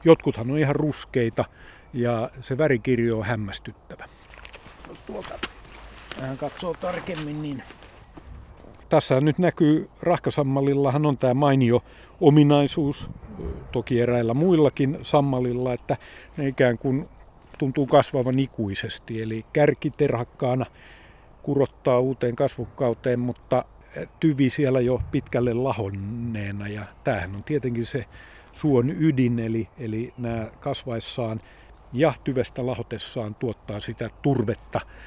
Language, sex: Finnish, male